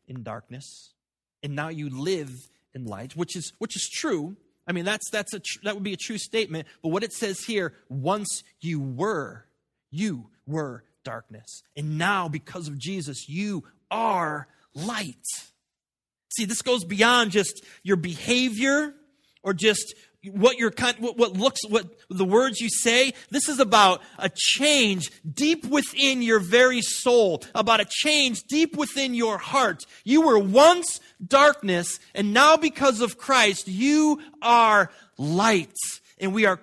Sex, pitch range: male, 165-240 Hz